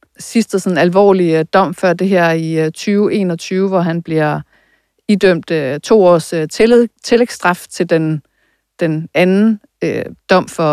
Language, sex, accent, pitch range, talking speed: Danish, female, native, 160-195 Hz, 125 wpm